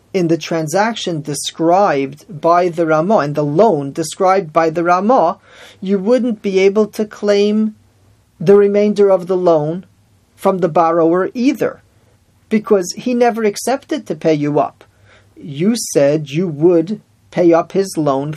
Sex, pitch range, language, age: male, 135-190 Hz, English, 40-59